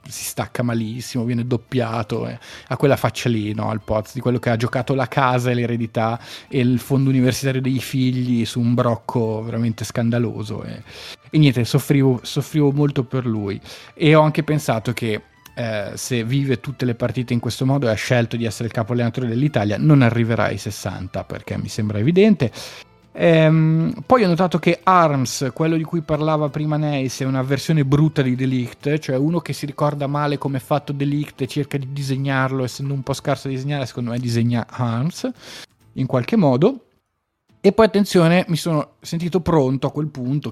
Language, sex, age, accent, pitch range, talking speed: Italian, male, 30-49, native, 120-150 Hz, 190 wpm